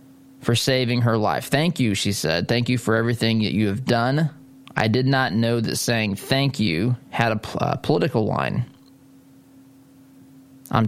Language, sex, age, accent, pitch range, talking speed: English, male, 20-39, American, 110-135 Hz, 165 wpm